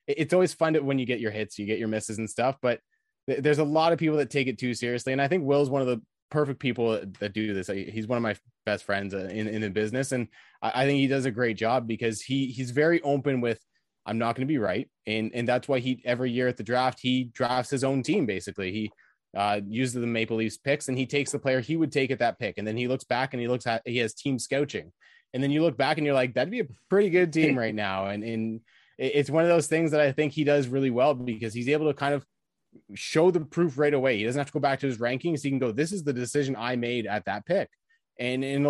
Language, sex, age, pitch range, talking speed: English, male, 20-39, 110-140 Hz, 290 wpm